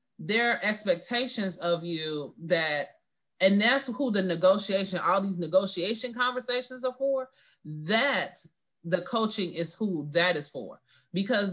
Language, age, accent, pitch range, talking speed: English, 30-49, American, 180-225 Hz, 135 wpm